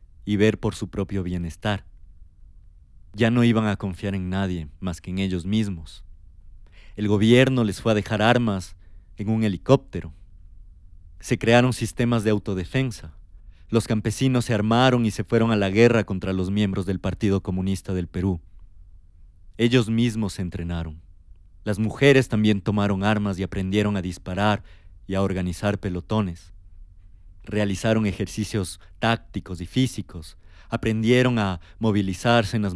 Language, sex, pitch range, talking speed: Spanish, male, 90-110 Hz, 145 wpm